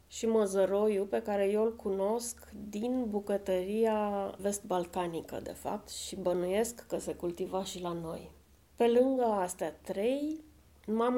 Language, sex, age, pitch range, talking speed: Romanian, female, 30-49, 185-230 Hz, 135 wpm